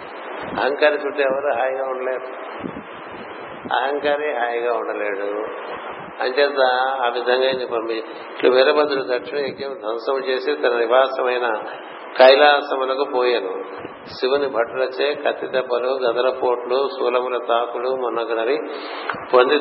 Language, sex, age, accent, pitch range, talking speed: Telugu, male, 60-79, native, 120-135 Hz, 85 wpm